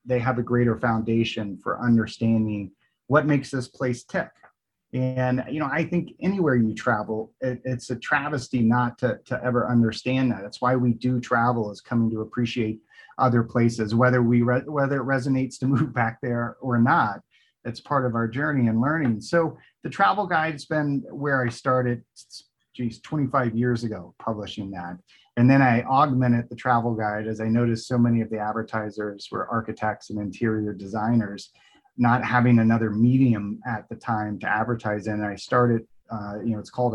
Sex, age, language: male, 30-49, English